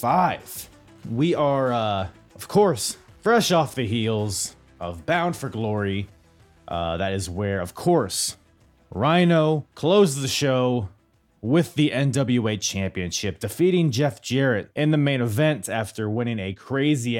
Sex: male